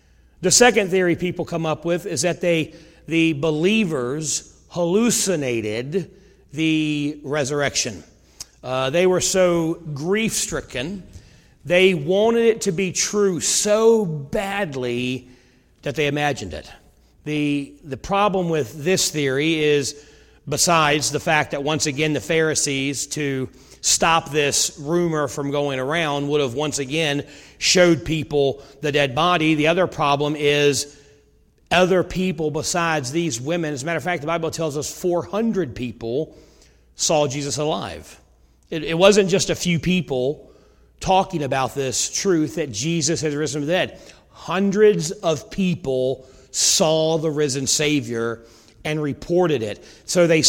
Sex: male